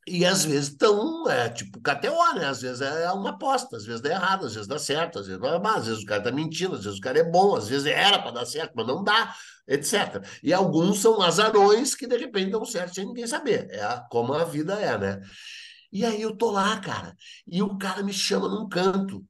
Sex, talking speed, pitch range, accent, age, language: male, 250 wpm, 135-195 Hz, Brazilian, 50-69, Portuguese